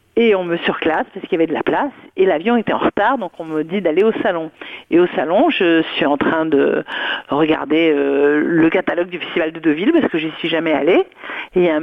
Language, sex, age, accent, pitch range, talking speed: French, female, 50-69, French, 170-245 Hz, 260 wpm